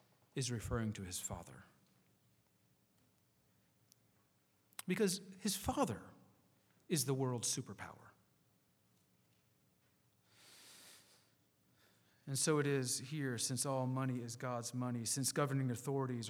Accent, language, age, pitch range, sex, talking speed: American, English, 40-59, 115-140 Hz, male, 95 wpm